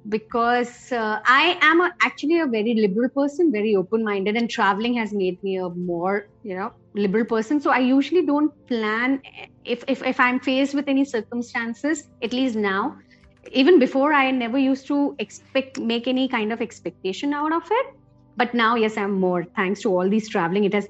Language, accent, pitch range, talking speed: Hindi, native, 190-245 Hz, 190 wpm